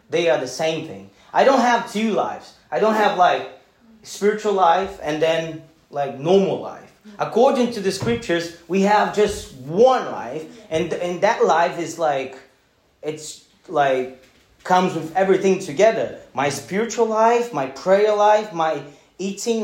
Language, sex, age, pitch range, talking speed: Portuguese, male, 30-49, 160-215 Hz, 155 wpm